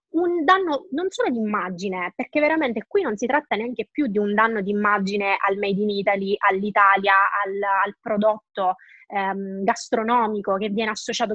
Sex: female